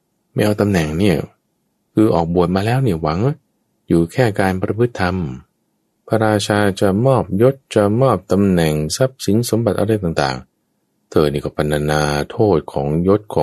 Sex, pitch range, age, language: male, 75-110 Hz, 20-39, Thai